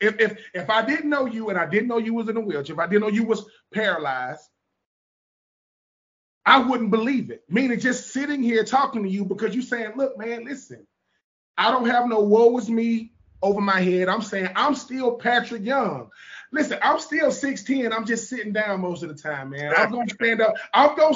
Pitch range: 190-245 Hz